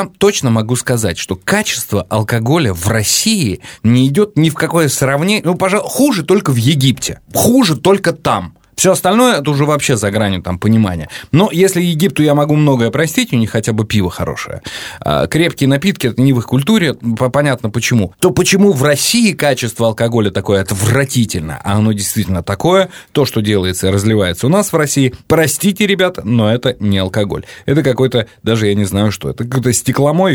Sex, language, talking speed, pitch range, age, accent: male, Russian, 180 wpm, 105-150 Hz, 20-39, native